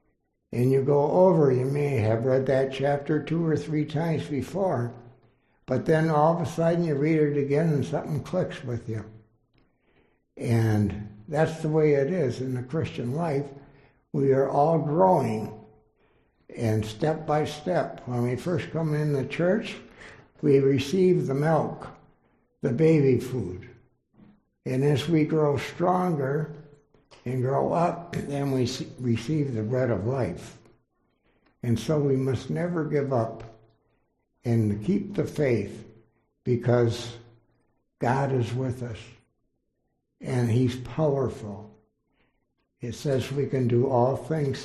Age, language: 60-79, English